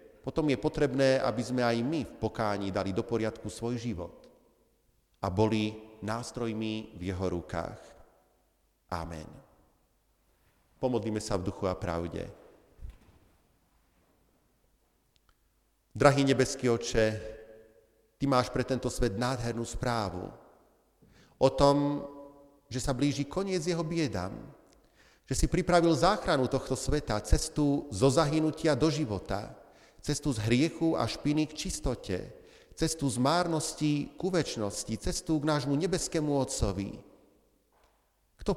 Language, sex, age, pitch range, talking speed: Slovak, male, 40-59, 105-145 Hz, 115 wpm